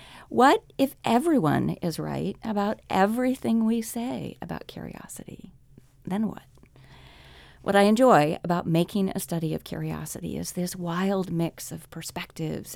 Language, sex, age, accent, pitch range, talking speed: English, female, 40-59, American, 155-210 Hz, 130 wpm